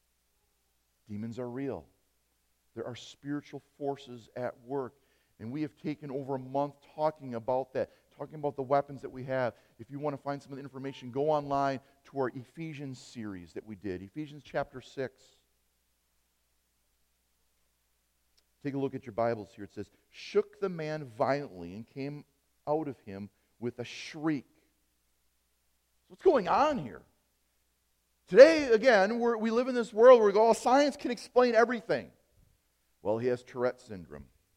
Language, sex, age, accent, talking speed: English, male, 40-59, American, 160 wpm